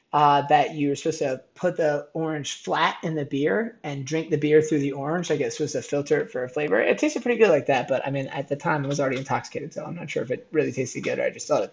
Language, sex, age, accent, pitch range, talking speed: English, male, 30-49, American, 140-180 Hz, 295 wpm